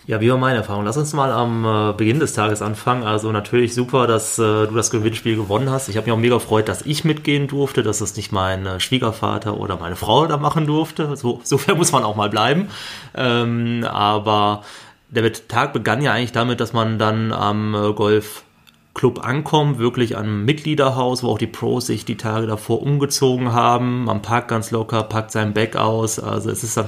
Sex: male